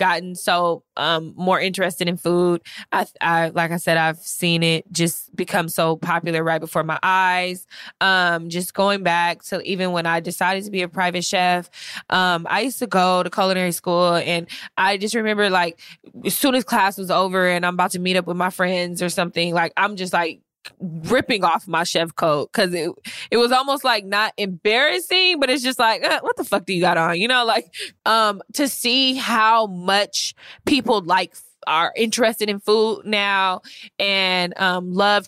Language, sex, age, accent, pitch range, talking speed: English, female, 20-39, American, 175-215 Hz, 195 wpm